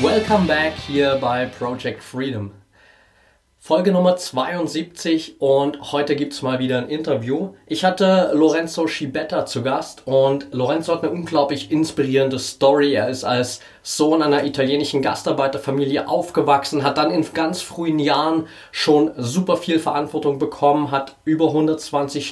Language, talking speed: German, 140 wpm